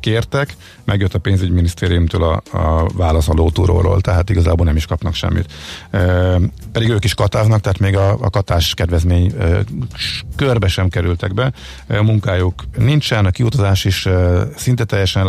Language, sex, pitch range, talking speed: Hungarian, male, 90-110 Hz, 150 wpm